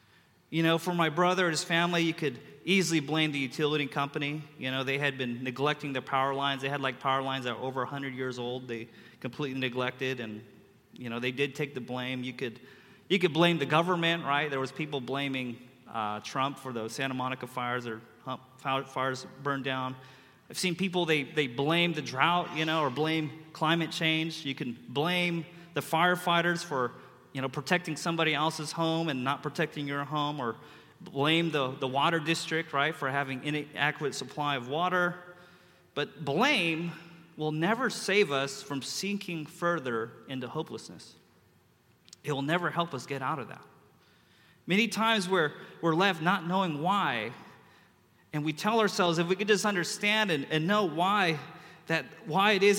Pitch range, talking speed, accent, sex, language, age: 135-170 Hz, 180 wpm, American, male, English, 30-49